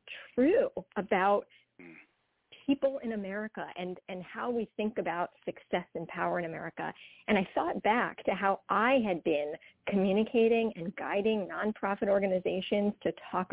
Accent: American